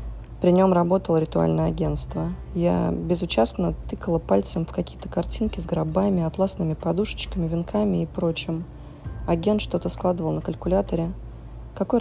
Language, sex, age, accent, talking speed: Russian, female, 20-39, native, 125 wpm